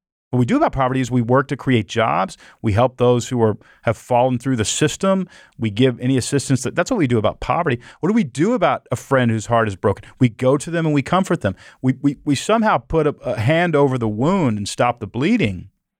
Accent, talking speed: American, 250 wpm